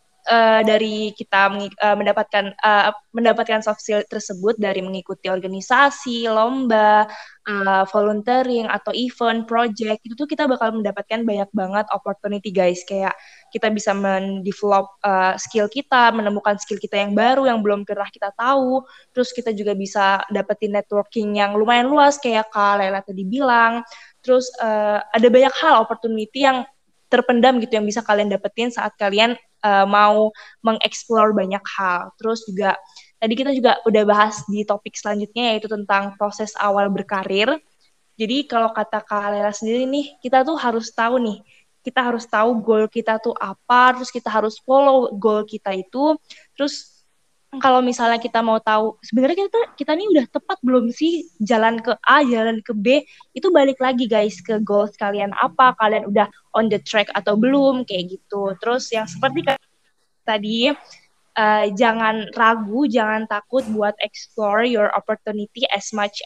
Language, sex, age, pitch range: Indonesian, female, 10-29, 205-245 Hz